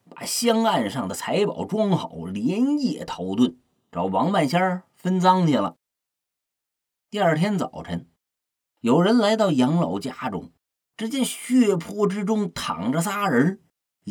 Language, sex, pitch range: Chinese, male, 205-255 Hz